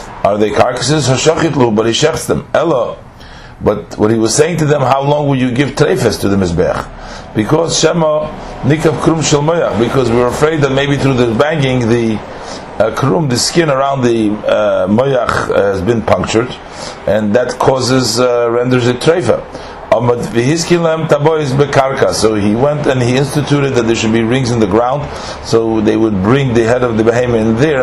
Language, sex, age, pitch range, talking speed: English, male, 50-69, 110-150 Hz, 165 wpm